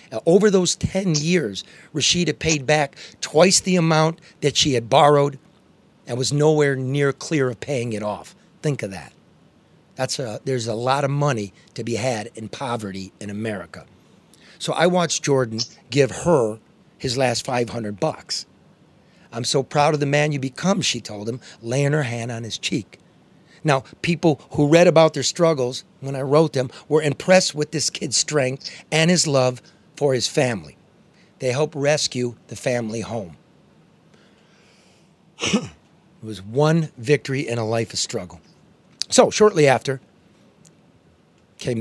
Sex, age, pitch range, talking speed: male, 40-59, 115-155 Hz, 160 wpm